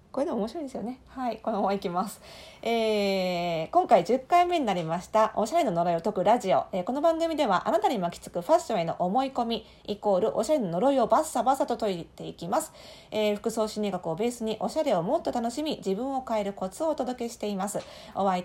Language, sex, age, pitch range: Japanese, female, 40-59, 195-270 Hz